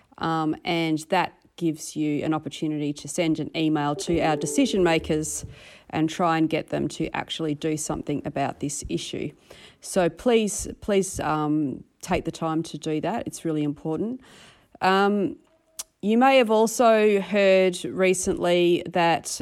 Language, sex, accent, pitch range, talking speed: English, female, Australian, 165-195 Hz, 150 wpm